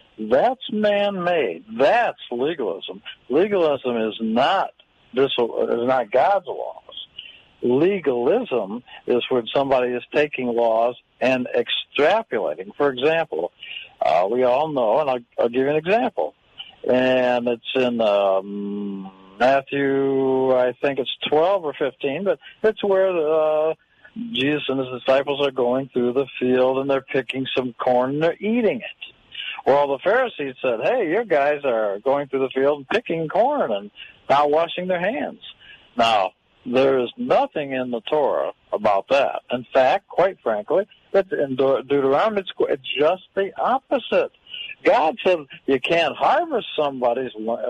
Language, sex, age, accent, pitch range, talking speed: English, male, 60-79, American, 125-195 Hz, 140 wpm